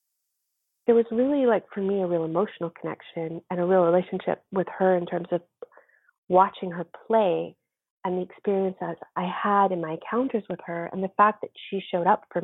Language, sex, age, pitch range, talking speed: English, female, 30-49, 180-215 Hz, 195 wpm